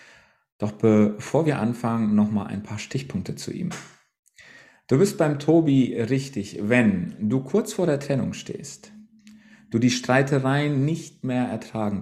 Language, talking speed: German, 145 wpm